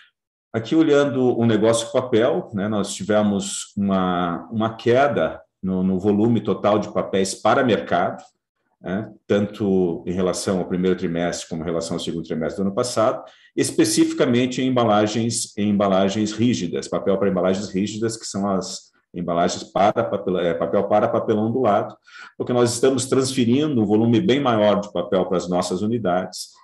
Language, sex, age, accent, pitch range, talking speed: Portuguese, male, 50-69, Brazilian, 90-115 Hz, 155 wpm